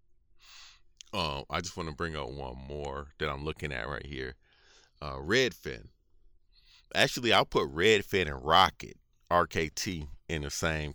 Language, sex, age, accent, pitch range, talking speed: English, male, 40-59, American, 75-95 Hz, 150 wpm